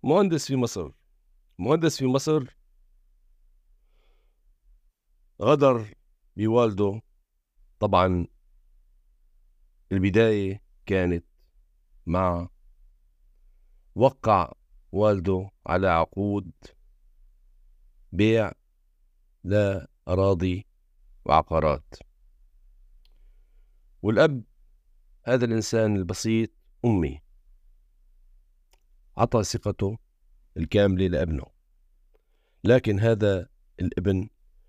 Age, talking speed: 50-69, 55 wpm